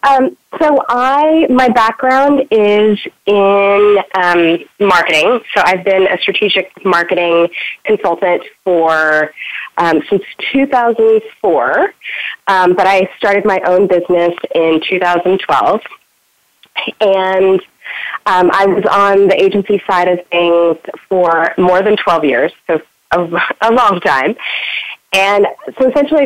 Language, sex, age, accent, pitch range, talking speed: English, female, 30-49, American, 175-215 Hz, 120 wpm